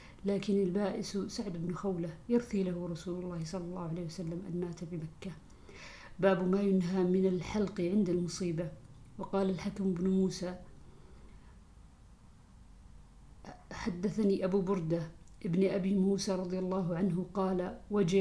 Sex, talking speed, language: female, 125 wpm, Arabic